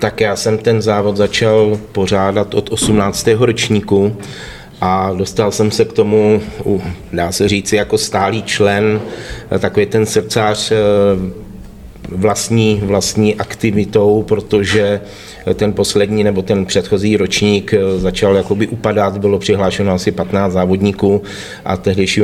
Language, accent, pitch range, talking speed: Czech, native, 95-105 Hz, 115 wpm